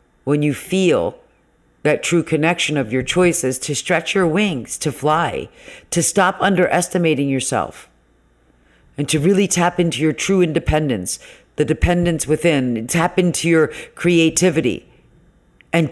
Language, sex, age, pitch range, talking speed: English, female, 50-69, 130-170 Hz, 130 wpm